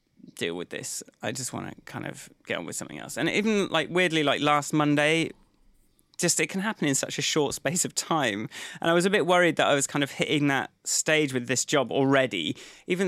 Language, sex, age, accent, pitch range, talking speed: English, male, 20-39, British, 125-165 Hz, 235 wpm